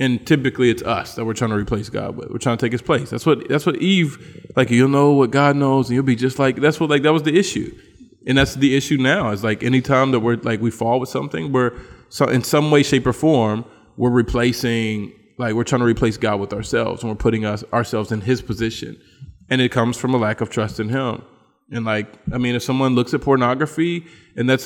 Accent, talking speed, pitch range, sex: American, 250 wpm, 115-140 Hz, male